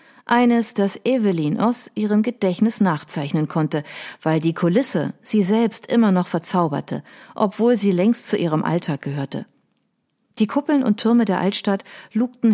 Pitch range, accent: 170-225 Hz, German